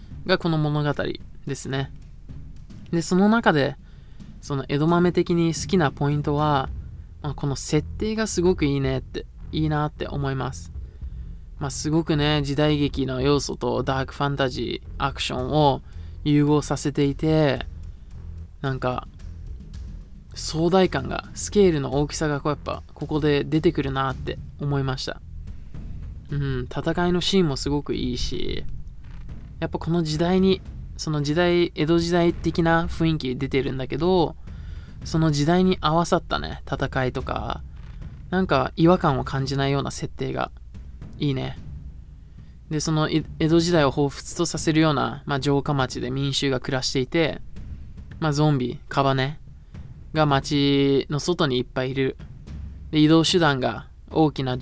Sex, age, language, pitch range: male, 20-39, Japanese, 125-160 Hz